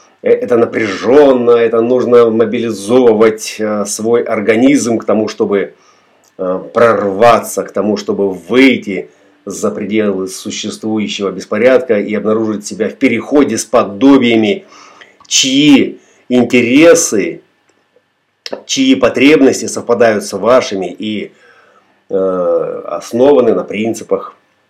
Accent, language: native, Russian